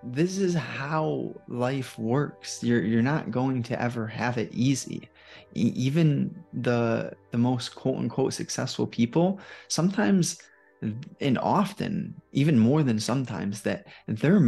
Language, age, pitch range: English, 20-39, 115-150 Hz